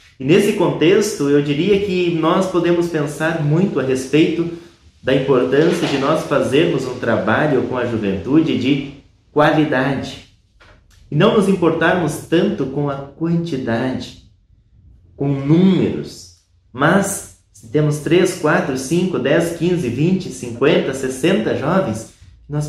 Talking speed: 125 wpm